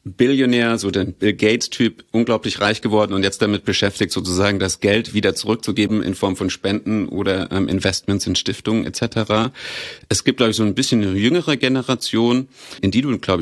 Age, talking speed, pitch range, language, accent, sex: 40-59, 185 wpm, 100-115 Hz, German, German, male